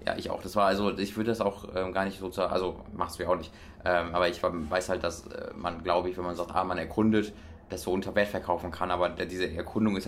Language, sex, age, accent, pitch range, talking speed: German, male, 20-39, German, 90-110 Hz, 285 wpm